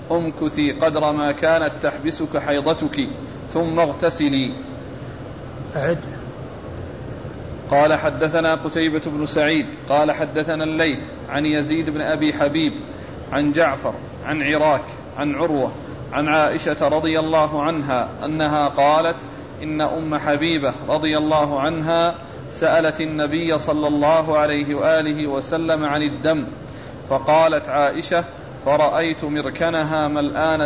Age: 40-59